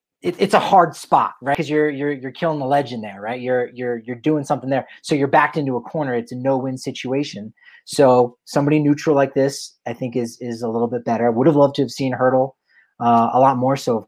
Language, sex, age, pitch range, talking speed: English, male, 30-49, 125-155 Hz, 245 wpm